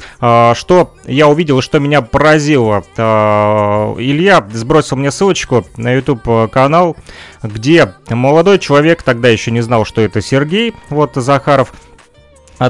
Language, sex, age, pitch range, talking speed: Russian, male, 30-49, 115-155 Hz, 125 wpm